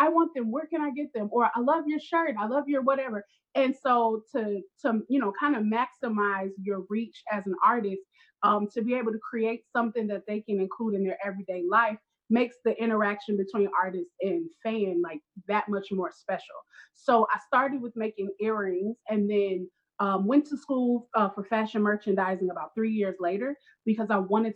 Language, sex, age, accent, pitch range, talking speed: English, female, 30-49, American, 195-240 Hz, 200 wpm